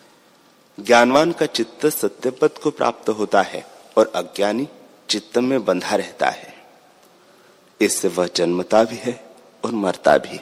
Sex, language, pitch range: male, Hindi, 105-125 Hz